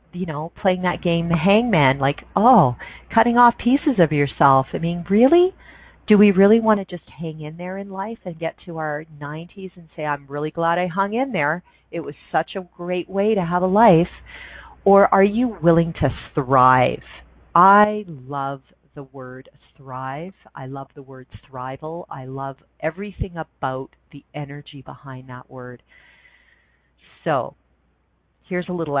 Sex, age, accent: female, 40-59, American